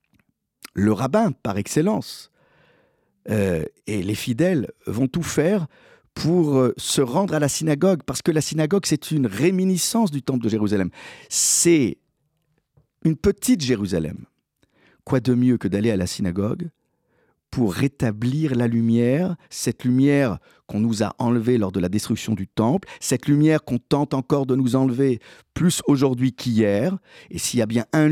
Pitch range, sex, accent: 105-150 Hz, male, French